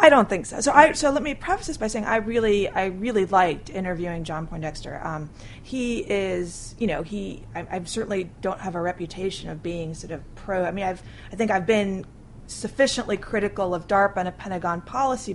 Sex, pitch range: female, 175-220 Hz